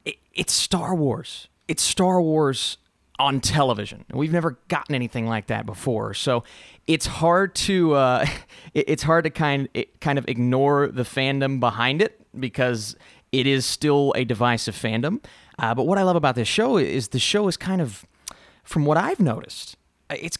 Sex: male